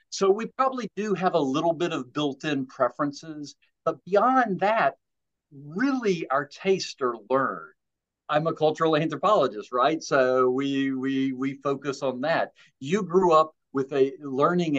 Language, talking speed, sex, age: English, 150 wpm, male, 50-69